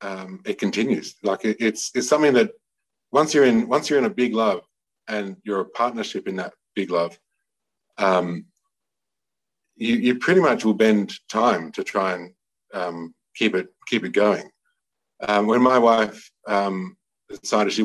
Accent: Australian